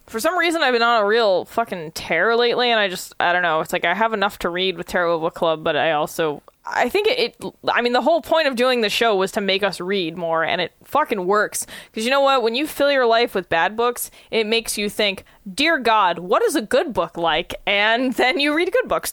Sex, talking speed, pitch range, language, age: female, 265 wpm, 185-250 Hz, English, 20-39